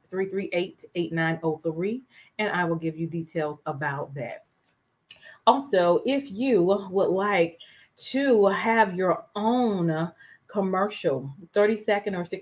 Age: 30-49